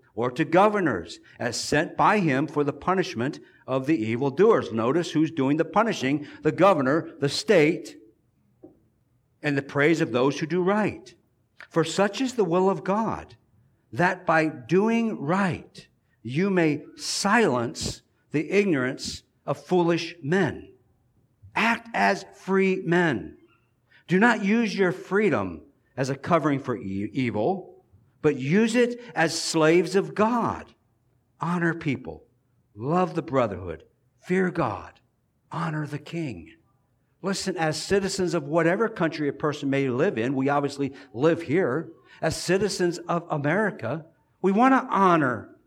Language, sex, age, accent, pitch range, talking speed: English, male, 50-69, American, 130-180 Hz, 135 wpm